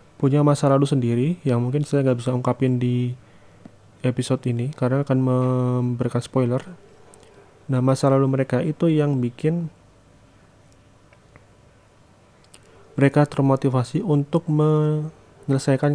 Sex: male